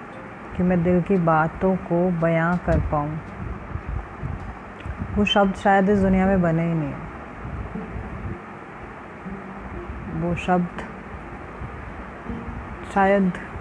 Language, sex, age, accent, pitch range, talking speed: Indonesian, female, 30-49, Indian, 160-195 Hz, 95 wpm